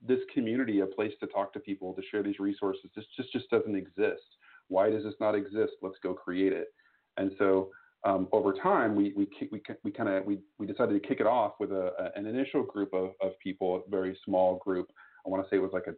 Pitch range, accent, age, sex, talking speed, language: 95-110 Hz, American, 40-59, male, 245 wpm, English